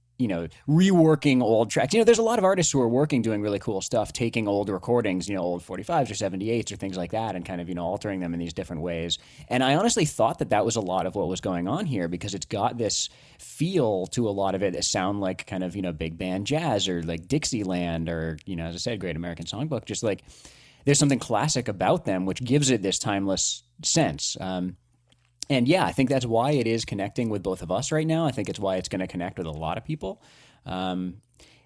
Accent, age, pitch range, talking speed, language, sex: American, 30-49, 85-130 Hz, 250 wpm, English, male